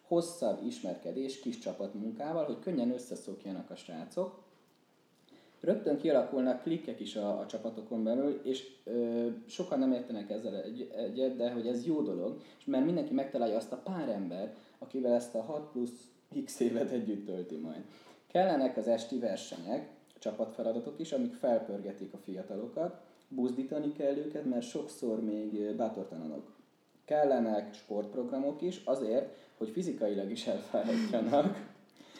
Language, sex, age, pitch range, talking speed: Hungarian, male, 20-39, 110-145 Hz, 140 wpm